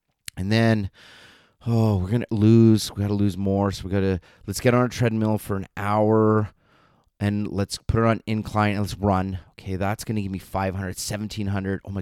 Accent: American